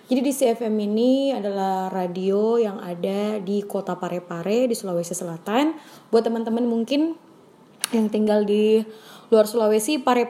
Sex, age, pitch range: female, 20-39, 215-265 Hz